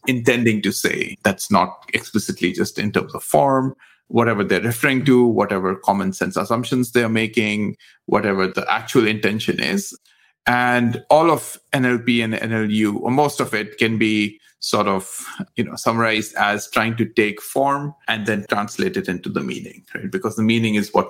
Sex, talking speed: male, 175 wpm